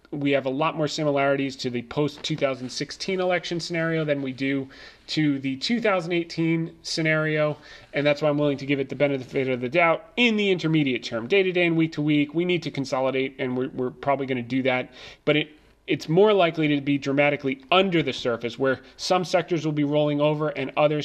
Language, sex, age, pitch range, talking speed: English, male, 30-49, 120-150 Hz, 200 wpm